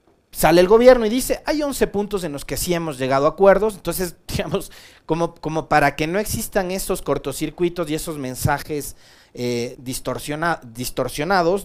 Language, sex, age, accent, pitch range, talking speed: Spanish, male, 30-49, Mexican, 130-170 Hz, 160 wpm